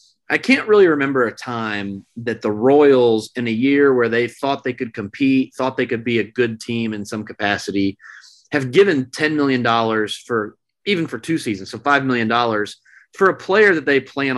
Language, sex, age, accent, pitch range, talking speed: English, male, 30-49, American, 110-140 Hz, 190 wpm